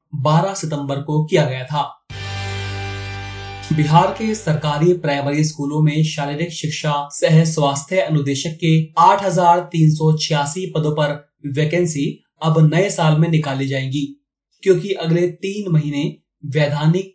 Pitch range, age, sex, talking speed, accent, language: 145-165 Hz, 30-49, male, 110 wpm, native, Hindi